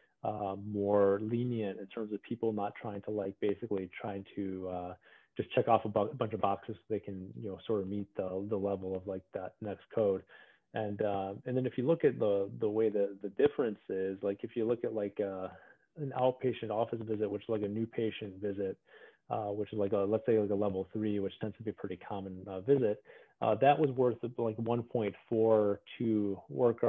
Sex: male